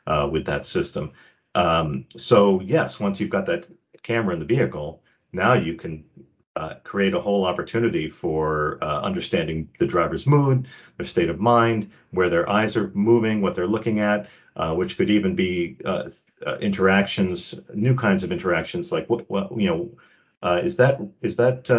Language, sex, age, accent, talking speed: English, male, 40-59, American, 175 wpm